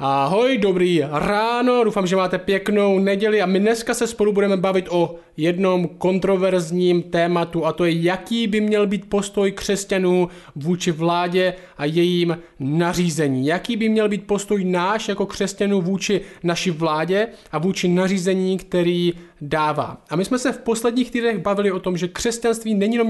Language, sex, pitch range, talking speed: Czech, male, 175-200 Hz, 165 wpm